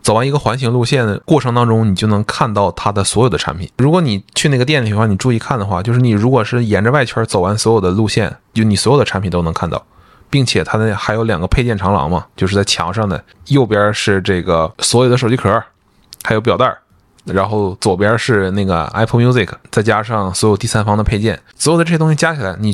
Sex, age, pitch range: male, 20-39, 100-125 Hz